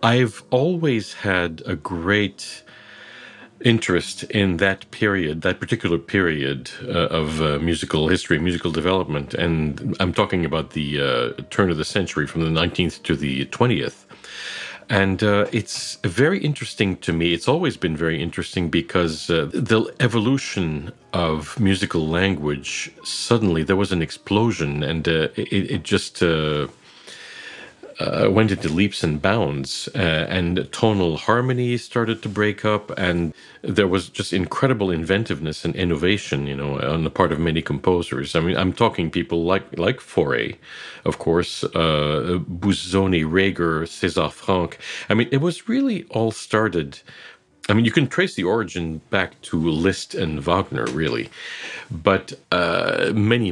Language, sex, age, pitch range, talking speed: English, male, 50-69, 80-105 Hz, 150 wpm